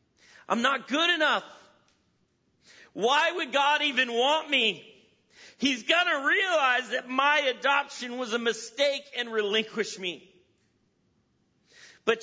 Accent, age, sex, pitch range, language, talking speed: American, 40-59, male, 235-295 Hz, English, 120 wpm